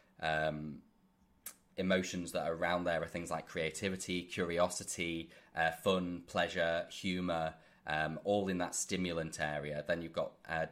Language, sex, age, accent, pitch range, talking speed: English, male, 20-39, British, 80-90 Hz, 140 wpm